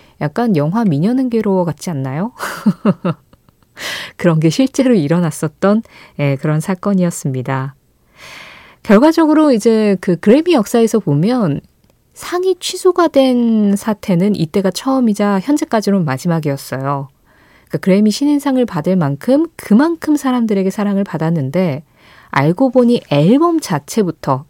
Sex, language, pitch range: female, Korean, 165-235 Hz